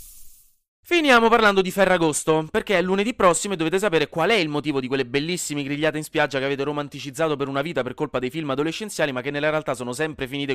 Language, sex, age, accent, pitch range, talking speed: Italian, male, 20-39, native, 125-175 Hz, 220 wpm